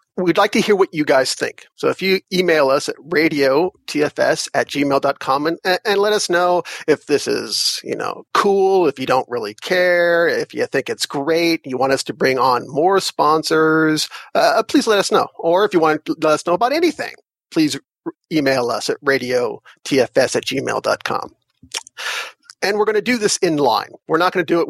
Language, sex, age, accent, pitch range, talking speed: English, male, 40-59, American, 140-205 Hz, 200 wpm